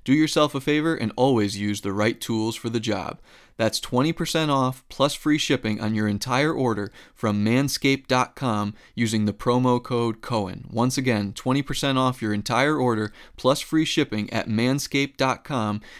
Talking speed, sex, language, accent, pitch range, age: 160 wpm, male, English, American, 105-130 Hz, 20-39